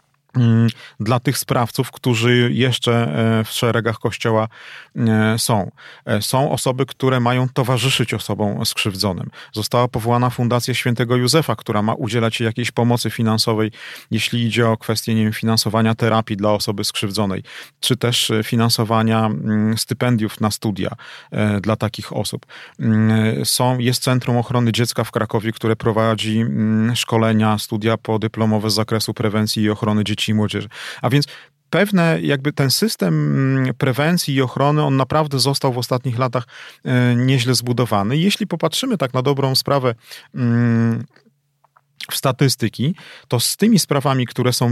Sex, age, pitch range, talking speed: male, 40-59, 110-130 Hz, 125 wpm